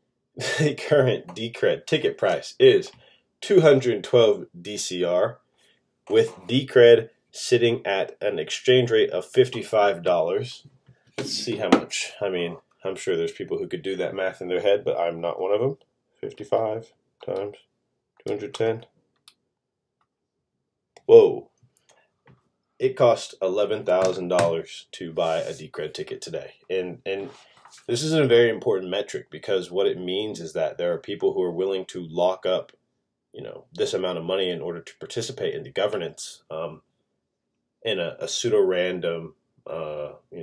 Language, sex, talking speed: English, male, 140 wpm